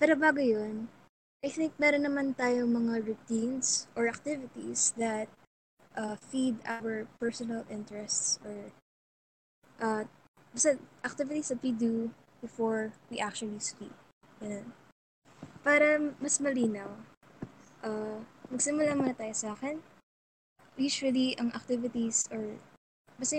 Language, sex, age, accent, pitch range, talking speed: Filipino, female, 20-39, native, 215-250 Hz, 115 wpm